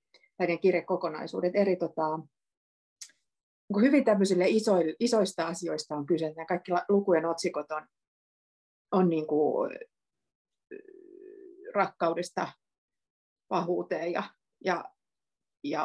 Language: Finnish